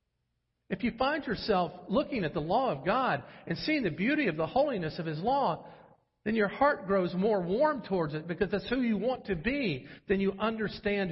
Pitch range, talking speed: 115-175 Hz, 205 wpm